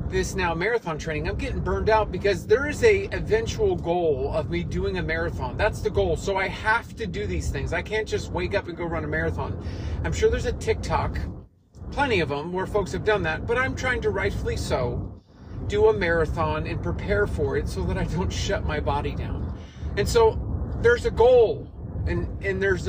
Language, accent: English, American